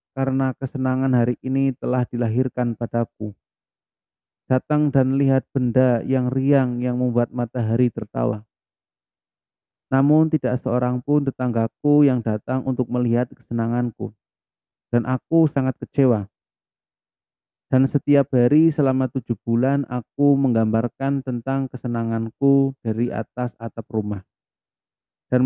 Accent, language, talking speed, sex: Indonesian, English, 110 wpm, male